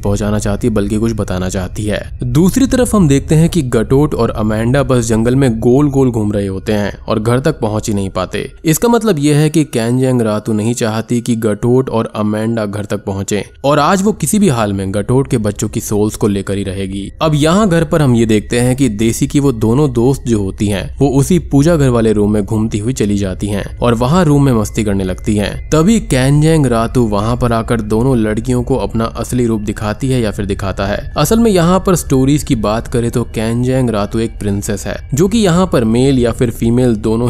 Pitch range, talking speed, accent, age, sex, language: 105-140 Hz, 230 wpm, native, 20-39, male, Hindi